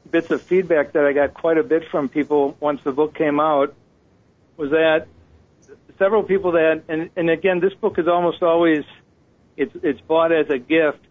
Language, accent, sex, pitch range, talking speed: English, American, male, 140-160 Hz, 190 wpm